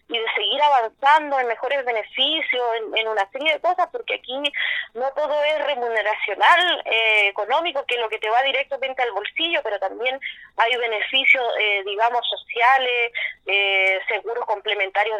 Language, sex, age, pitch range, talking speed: Spanish, female, 20-39, 220-295 Hz, 160 wpm